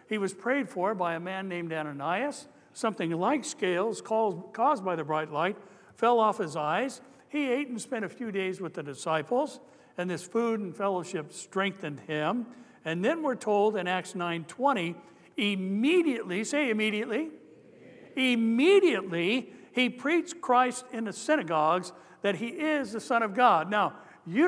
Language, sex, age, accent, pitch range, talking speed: English, male, 60-79, American, 185-250 Hz, 155 wpm